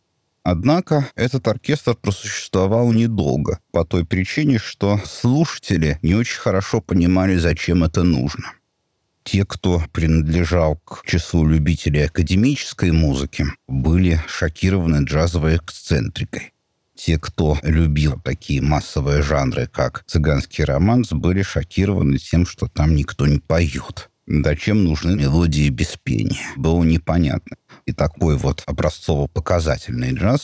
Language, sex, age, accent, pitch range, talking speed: Russian, male, 50-69, native, 80-110 Hz, 110 wpm